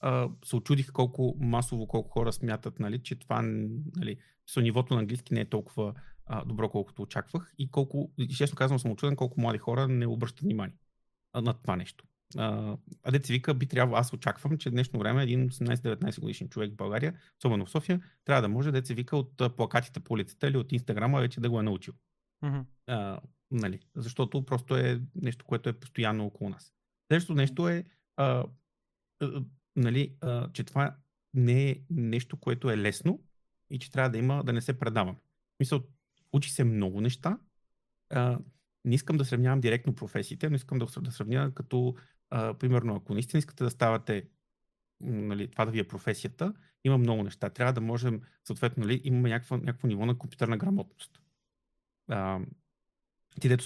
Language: Bulgarian